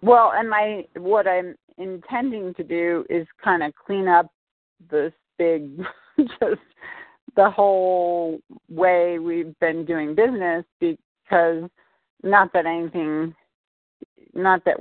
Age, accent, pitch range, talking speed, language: 40-59, American, 160-180 Hz, 120 wpm, English